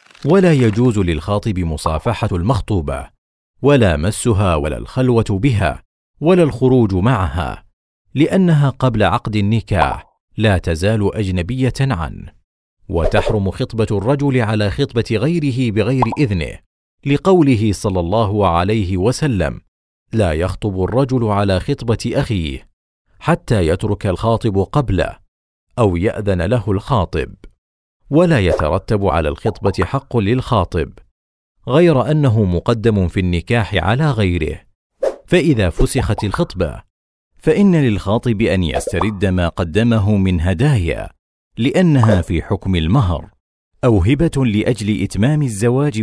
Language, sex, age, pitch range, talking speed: Arabic, male, 40-59, 90-130 Hz, 105 wpm